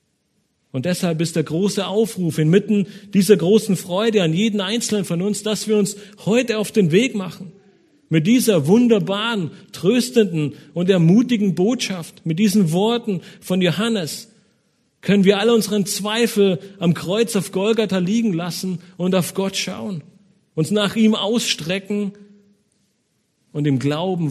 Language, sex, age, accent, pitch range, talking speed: German, male, 40-59, German, 155-205 Hz, 140 wpm